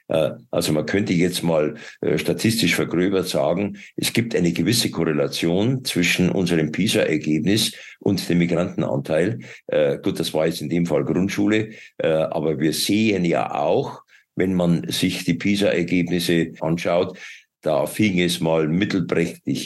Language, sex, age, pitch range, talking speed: German, male, 60-79, 80-95 Hz, 130 wpm